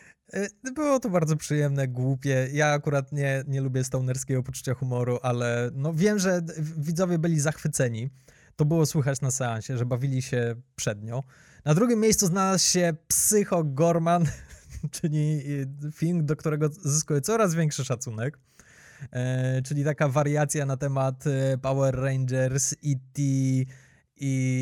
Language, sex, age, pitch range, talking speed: Polish, male, 20-39, 130-155 Hz, 130 wpm